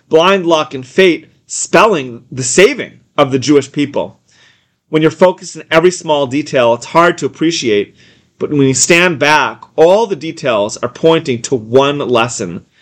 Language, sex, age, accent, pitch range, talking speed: English, male, 30-49, American, 130-180 Hz, 165 wpm